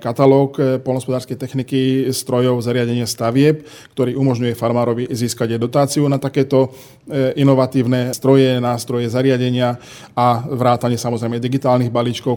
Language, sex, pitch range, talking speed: Slovak, male, 120-135 Hz, 110 wpm